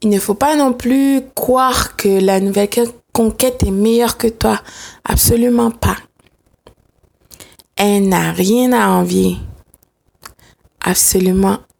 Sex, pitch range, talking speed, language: female, 205-245 Hz, 115 wpm, French